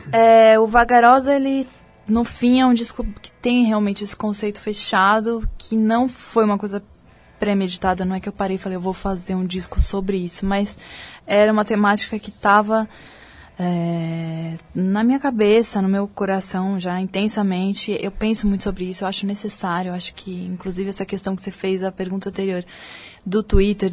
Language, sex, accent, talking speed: Portuguese, female, Brazilian, 180 wpm